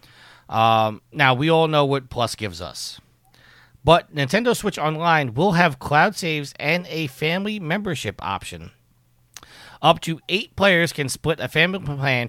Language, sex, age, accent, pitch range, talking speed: English, male, 40-59, American, 120-160 Hz, 150 wpm